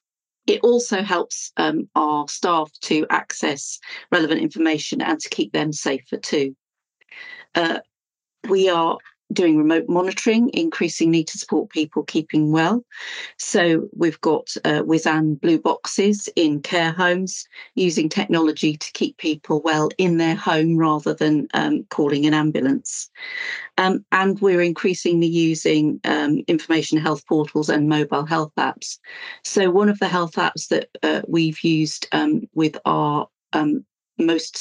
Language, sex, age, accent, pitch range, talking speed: English, female, 40-59, British, 155-195 Hz, 140 wpm